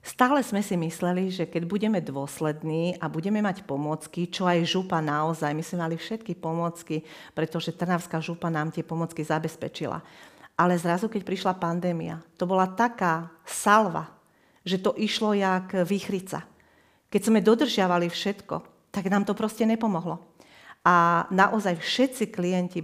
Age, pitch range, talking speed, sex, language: 40-59, 170-205 Hz, 145 wpm, female, Slovak